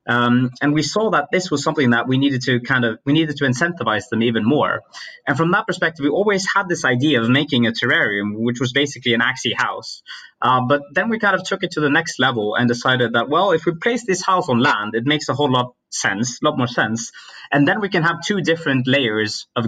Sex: male